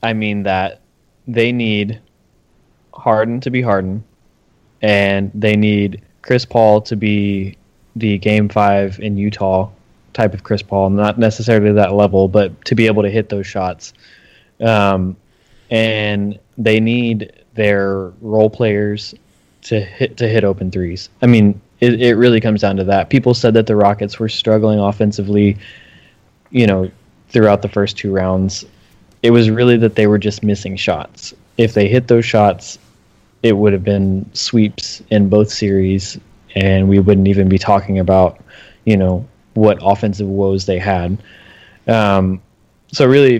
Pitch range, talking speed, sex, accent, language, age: 100-110 Hz, 155 wpm, male, American, English, 20-39